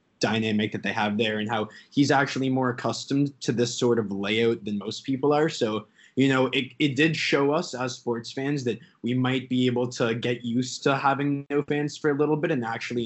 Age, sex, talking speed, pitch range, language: 20-39, male, 225 wpm, 110-135 Hz, English